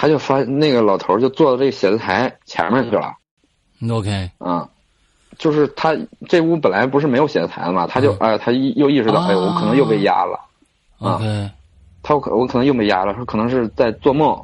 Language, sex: Chinese, male